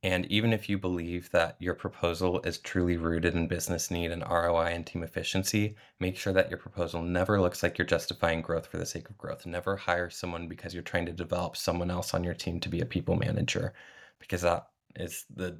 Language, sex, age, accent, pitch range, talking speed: English, male, 20-39, American, 85-100 Hz, 220 wpm